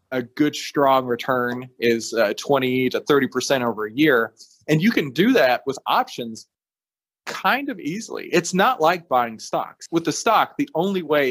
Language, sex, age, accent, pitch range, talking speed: English, male, 30-49, American, 125-175 Hz, 175 wpm